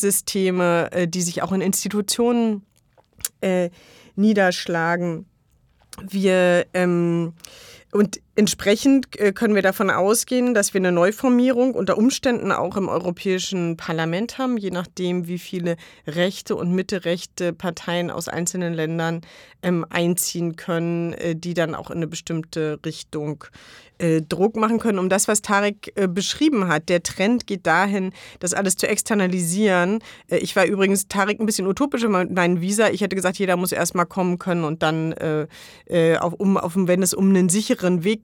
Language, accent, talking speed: German, German, 145 wpm